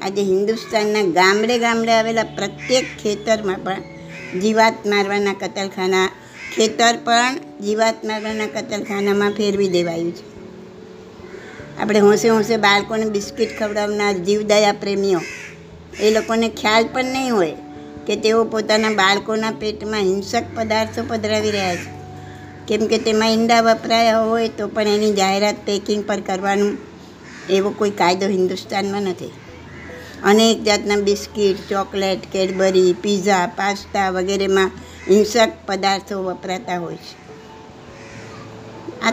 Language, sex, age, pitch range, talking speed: Gujarati, male, 60-79, 190-220 Hz, 115 wpm